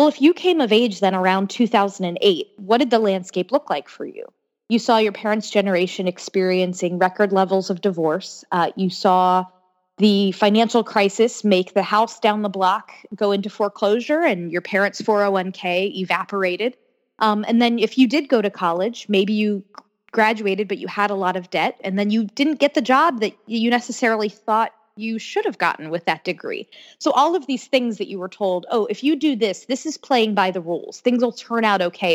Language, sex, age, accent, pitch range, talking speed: English, female, 20-39, American, 185-230 Hz, 205 wpm